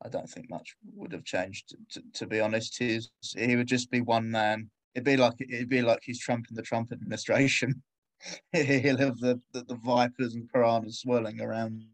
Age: 20-39